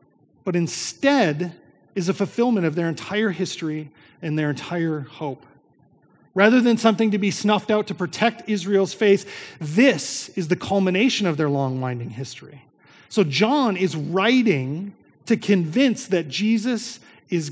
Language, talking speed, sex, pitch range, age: English, 140 wpm, male, 160-210 Hz, 30-49